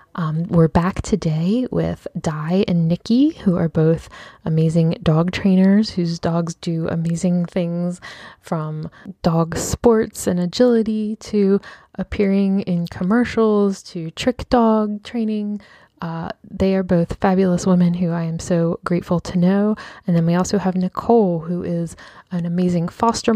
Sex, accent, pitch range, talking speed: female, American, 175-205 Hz, 145 wpm